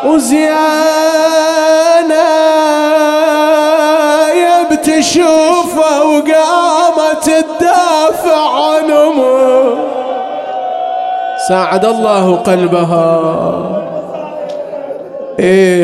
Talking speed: 40 wpm